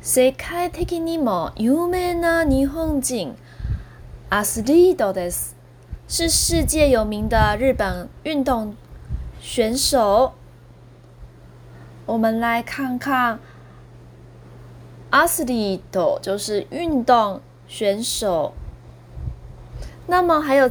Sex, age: female, 20-39